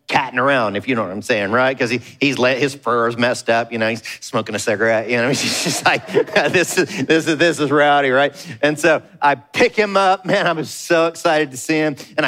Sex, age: male, 40-59